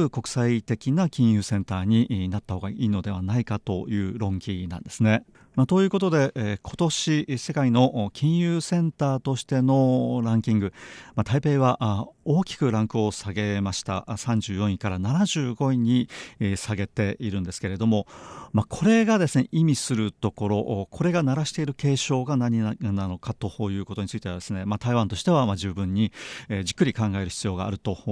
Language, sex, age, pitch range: Japanese, male, 40-59, 100-135 Hz